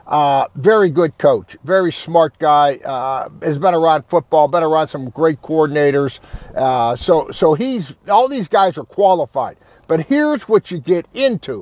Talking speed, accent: 165 wpm, American